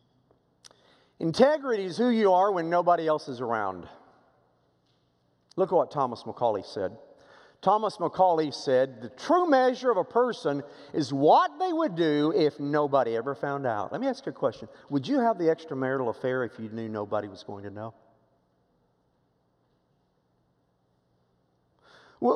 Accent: American